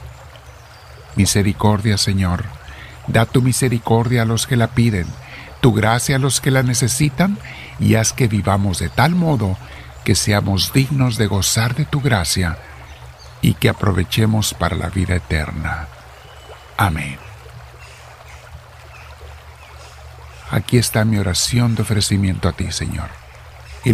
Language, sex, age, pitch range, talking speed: Spanish, male, 50-69, 75-110 Hz, 125 wpm